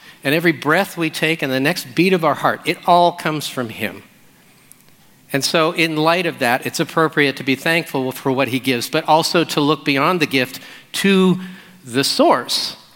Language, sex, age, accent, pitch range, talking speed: English, male, 50-69, American, 125-160 Hz, 195 wpm